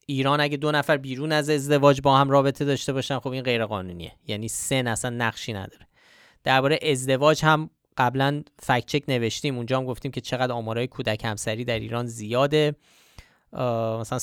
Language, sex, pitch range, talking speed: Persian, male, 120-150 Hz, 165 wpm